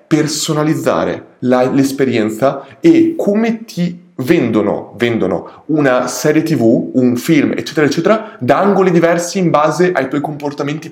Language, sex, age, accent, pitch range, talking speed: Italian, male, 20-39, native, 110-135 Hz, 125 wpm